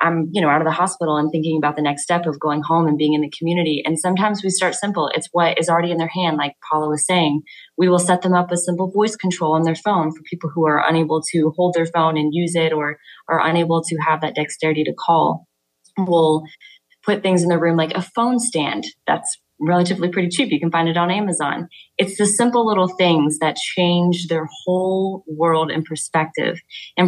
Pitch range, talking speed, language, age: 155-180 Hz, 230 wpm, English, 20-39